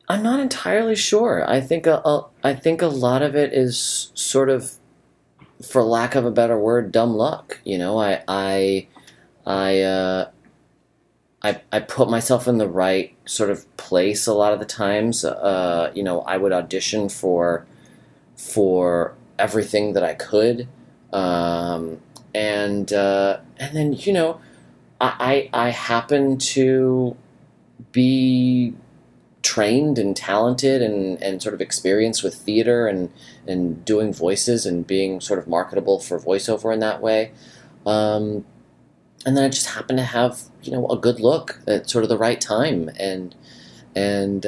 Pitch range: 95-125 Hz